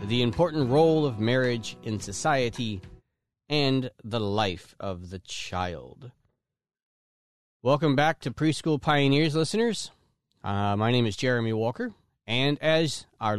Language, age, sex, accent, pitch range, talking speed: English, 30-49, male, American, 110-145 Hz, 125 wpm